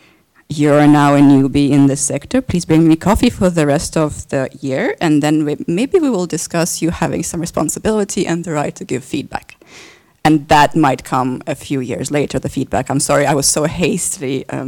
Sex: female